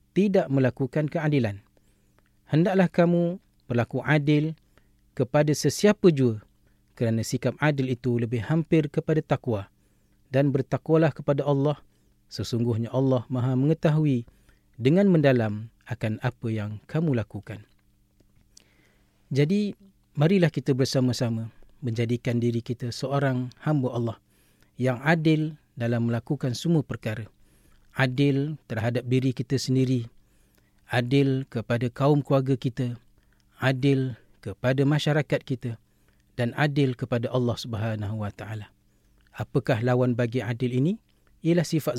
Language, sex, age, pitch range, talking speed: Malay, male, 40-59, 115-145 Hz, 110 wpm